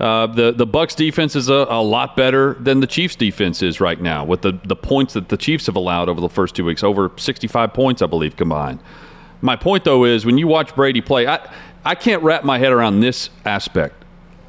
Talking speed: 230 wpm